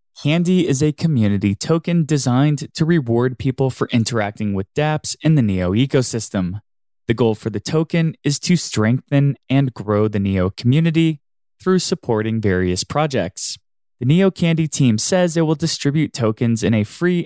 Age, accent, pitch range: 20-39, American, 110-160 Hz